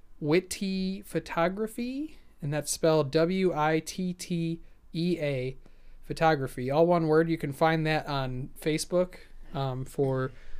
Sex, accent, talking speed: male, American, 100 wpm